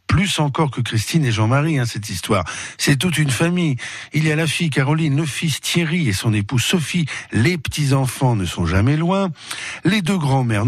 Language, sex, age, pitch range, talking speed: French, male, 60-79, 105-155 Hz, 190 wpm